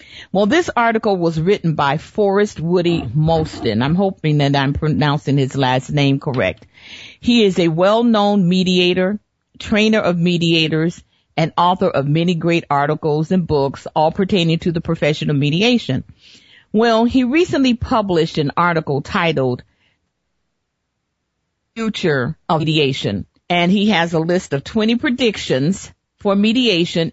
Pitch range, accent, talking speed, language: 145-195 Hz, American, 135 wpm, English